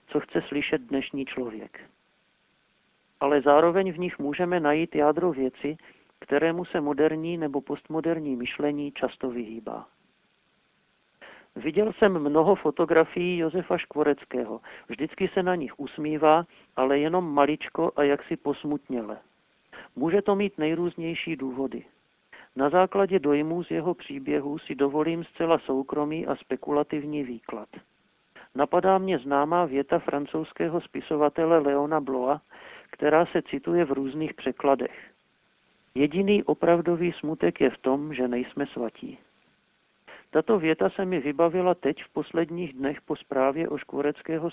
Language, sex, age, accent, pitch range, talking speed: Czech, male, 50-69, native, 140-170 Hz, 125 wpm